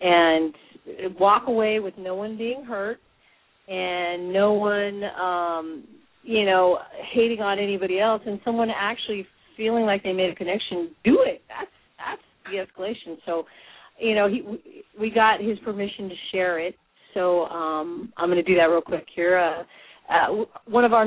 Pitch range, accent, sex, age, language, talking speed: 170-215 Hz, American, female, 40-59, English, 165 wpm